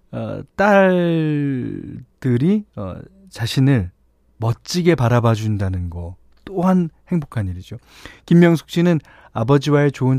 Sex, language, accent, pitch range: male, Korean, native, 100-145 Hz